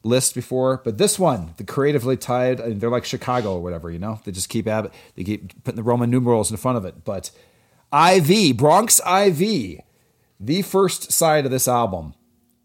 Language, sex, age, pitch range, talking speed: English, male, 40-59, 110-140 Hz, 200 wpm